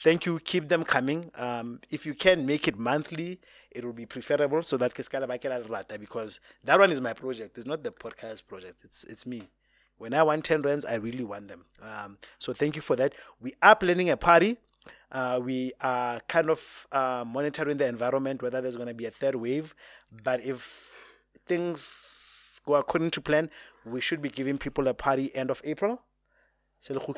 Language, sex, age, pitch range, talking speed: English, male, 20-39, 120-155 Hz, 190 wpm